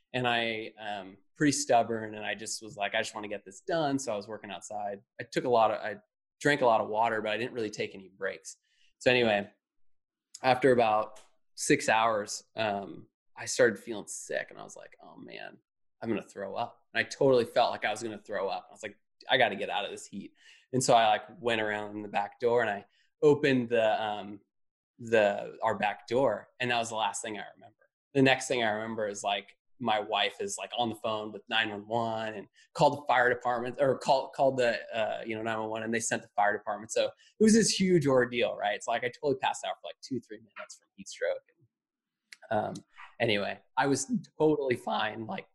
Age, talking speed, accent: 20-39, 230 wpm, American